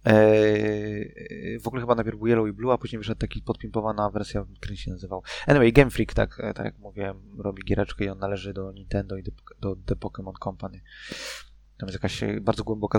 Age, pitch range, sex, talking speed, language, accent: 20-39, 95-110 Hz, male, 200 wpm, Polish, native